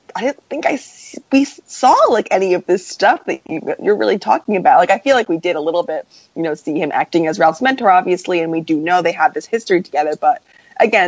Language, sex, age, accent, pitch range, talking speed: English, female, 20-39, American, 155-185 Hz, 250 wpm